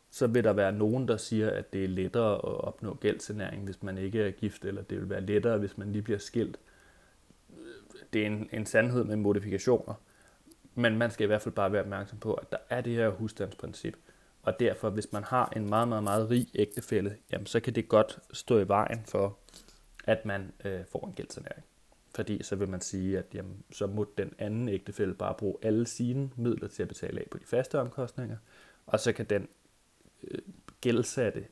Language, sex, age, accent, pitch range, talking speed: Danish, male, 20-39, native, 100-120 Hz, 205 wpm